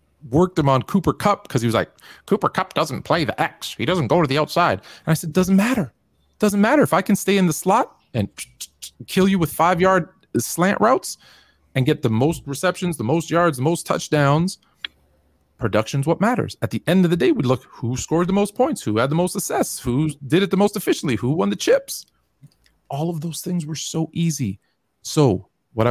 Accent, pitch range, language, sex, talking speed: American, 125-180 Hz, English, male, 215 wpm